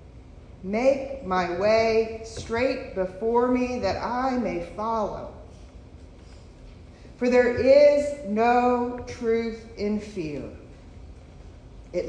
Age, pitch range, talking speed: 40-59, 175-240 Hz, 90 wpm